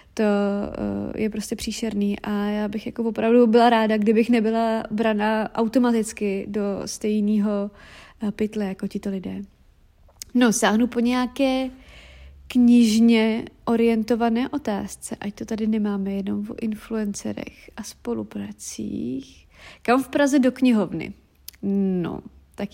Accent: native